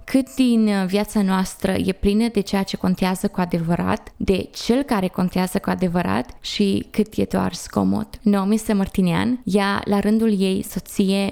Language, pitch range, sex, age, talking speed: Romanian, 185-215 Hz, female, 20-39, 160 wpm